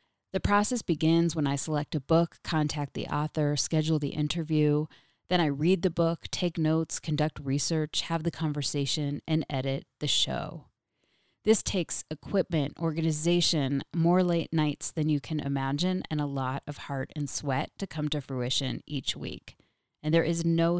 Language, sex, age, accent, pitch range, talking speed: English, female, 30-49, American, 145-175 Hz, 165 wpm